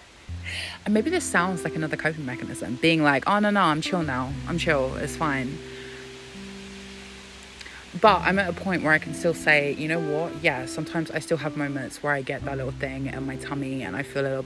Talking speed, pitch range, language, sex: 220 wpm, 130-190 Hz, English, female